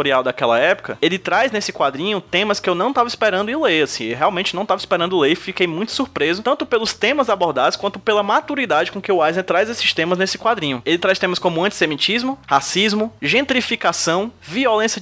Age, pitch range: 20-39, 160-215 Hz